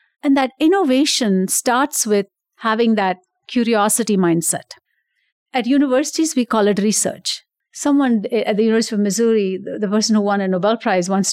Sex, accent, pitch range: female, Indian, 200-265 Hz